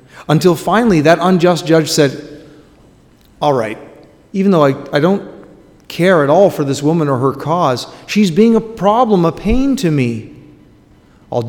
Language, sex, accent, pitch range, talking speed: English, male, American, 125-175 Hz, 160 wpm